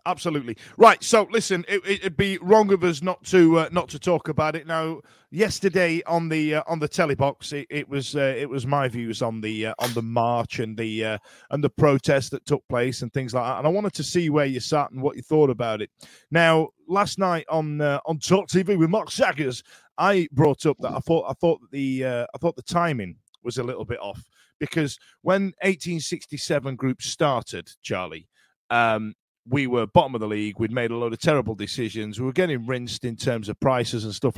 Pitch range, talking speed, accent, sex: 130-195 Hz, 220 wpm, British, male